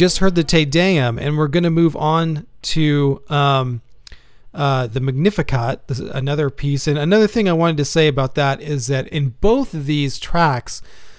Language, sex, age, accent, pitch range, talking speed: English, male, 40-59, American, 130-155 Hz, 195 wpm